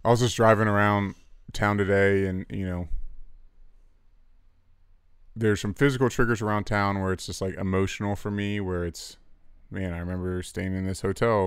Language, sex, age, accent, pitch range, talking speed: English, male, 20-39, American, 85-100 Hz, 165 wpm